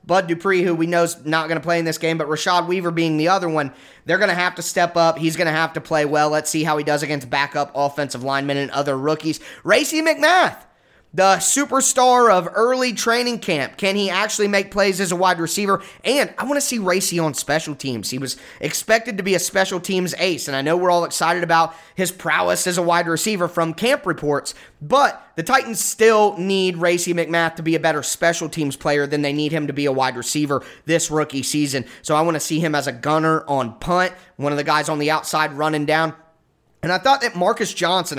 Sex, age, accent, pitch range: male, 20-39, American, 155-195 Hz